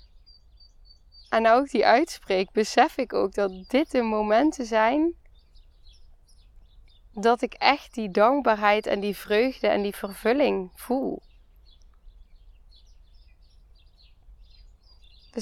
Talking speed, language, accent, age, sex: 95 wpm, Dutch, Dutch, 10-29, female